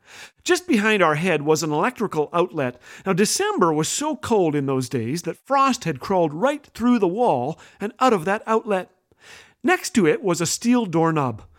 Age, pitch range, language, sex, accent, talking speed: 50-69, 175-275 Hz, English, male, American, 185 wpm